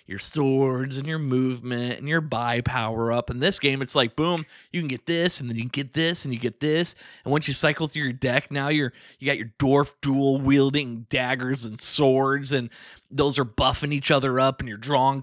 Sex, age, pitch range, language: male, 20-39, 120-150 Hz, English